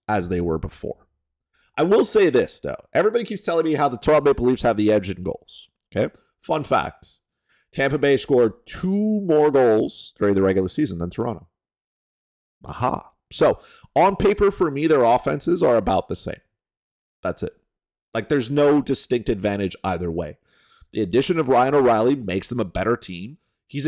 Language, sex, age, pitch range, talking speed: English, male, 30-49, 95-135 Hz, 175 wpm